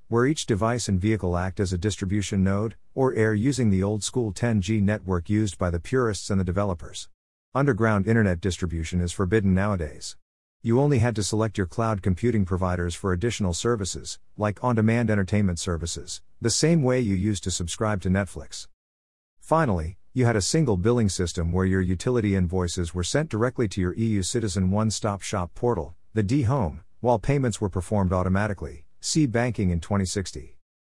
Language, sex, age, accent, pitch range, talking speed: English, male, 50-69, American, 90-115 Hz, 170 wpm